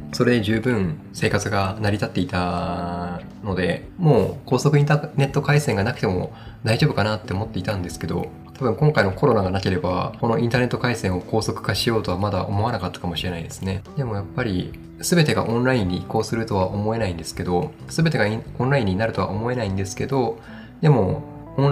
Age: 20-39